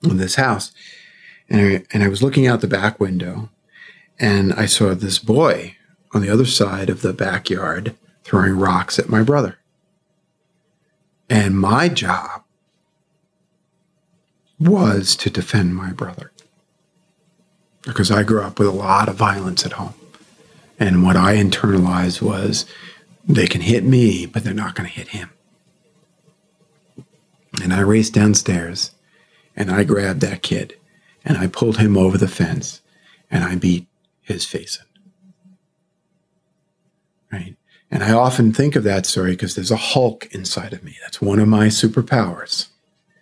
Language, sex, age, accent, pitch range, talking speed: English, male, 50-69, American, 100-160 Hz, 150 wpm